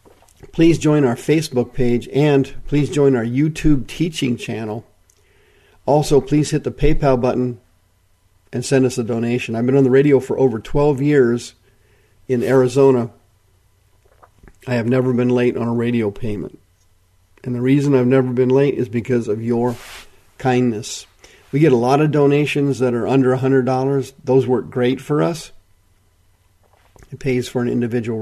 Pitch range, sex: 115-140 Hz, male